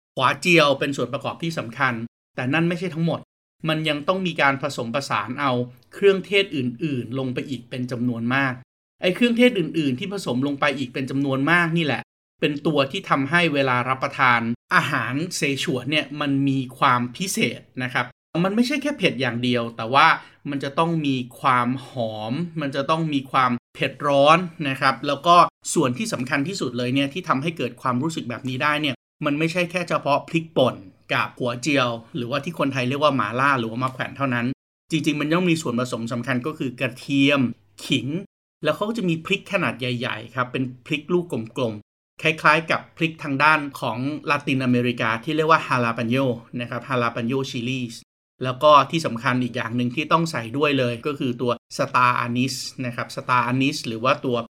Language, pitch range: Thai, 125-155 Hz